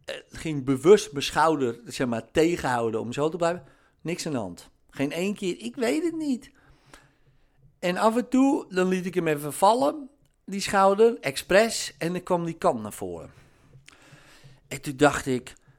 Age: 50-69